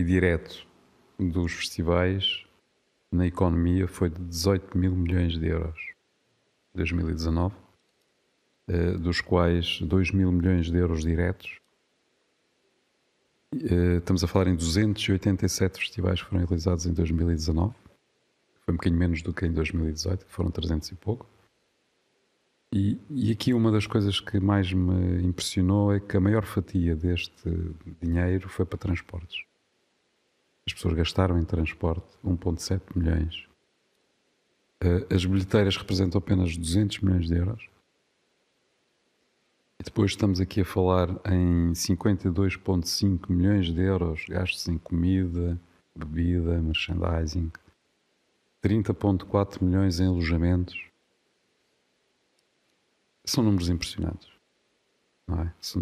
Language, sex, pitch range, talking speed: Portuguese, male, 85-95 Hz, 110 wpm